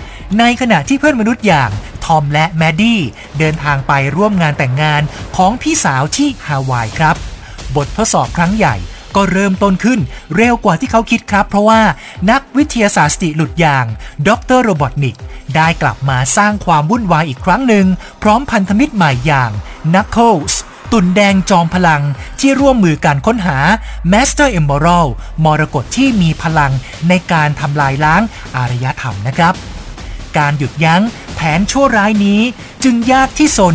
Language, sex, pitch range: Thai, male, 145-210 Hz